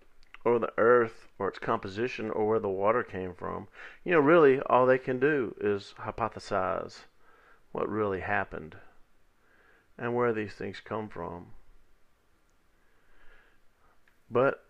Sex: male